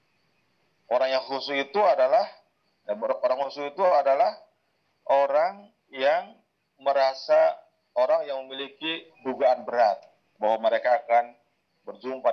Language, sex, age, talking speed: Malay, male, 30-49, 100 wpm